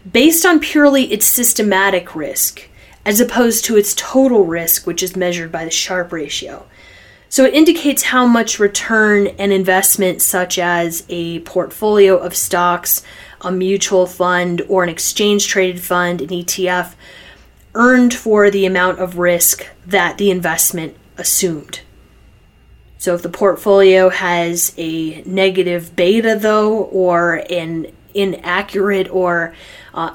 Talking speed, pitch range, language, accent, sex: 130 wpm, 180-210 Hz, English, American, female